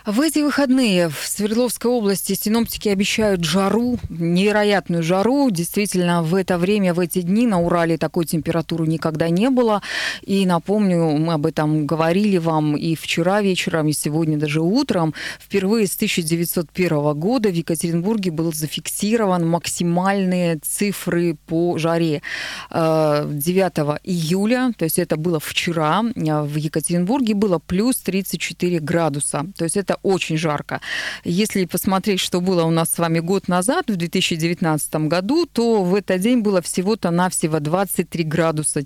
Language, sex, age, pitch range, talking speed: Russian, female, 20-39, 165-210 Hz, 140 wpm